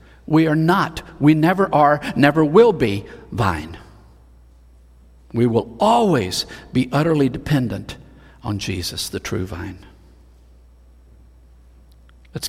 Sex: male